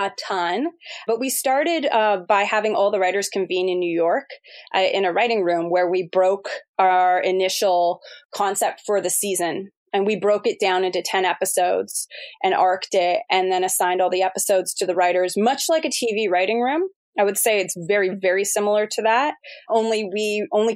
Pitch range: 185-215 Hz